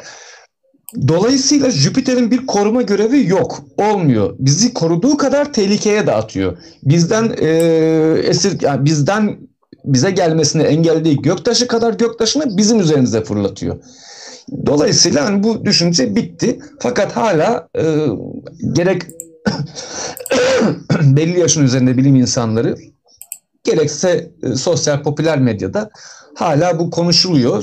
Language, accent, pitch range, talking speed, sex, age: Turkish, native, 140-205 Hz, 110 wpm, male, 50-69